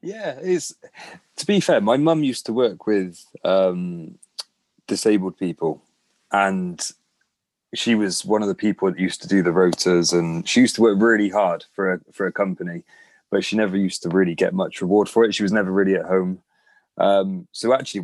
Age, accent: 20-39, British